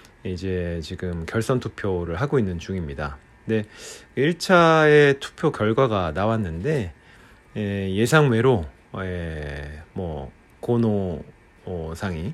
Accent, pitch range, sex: native, 90-125 Hz, male